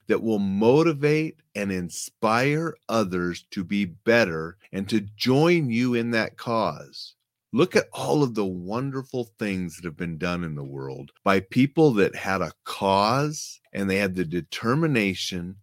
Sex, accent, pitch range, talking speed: male, American, 95-140 Hz, 155 wpm